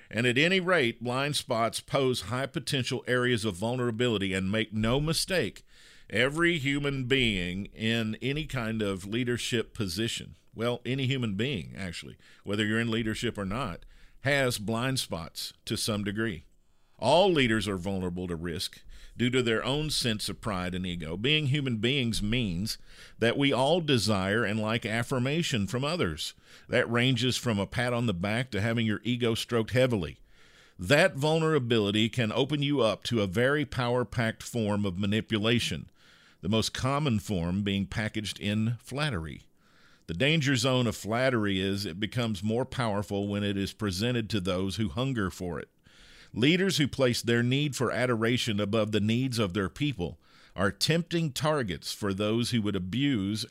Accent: American